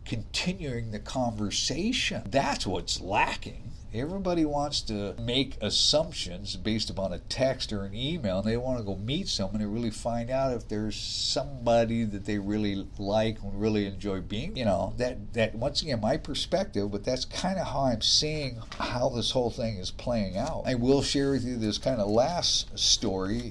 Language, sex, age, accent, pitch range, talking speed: English, male, 50-69, American, 100-125 Hz, 185 wpm